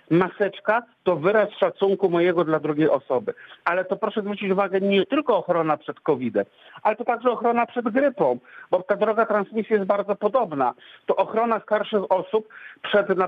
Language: Polish